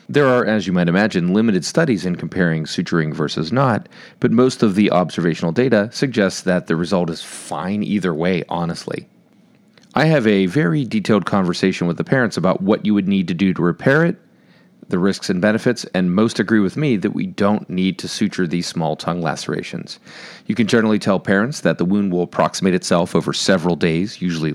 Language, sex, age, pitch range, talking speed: English, male, 40-59, 90-115 Hz, 200 wpm